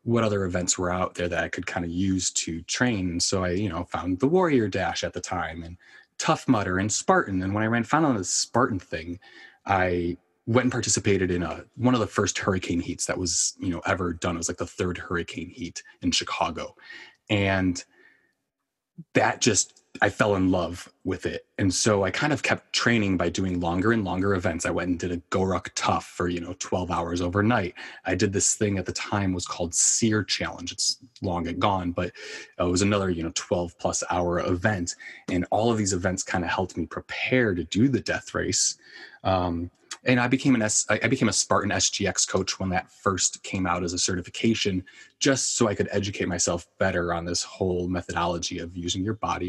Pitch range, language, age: 85-105 Hz, English, 20-39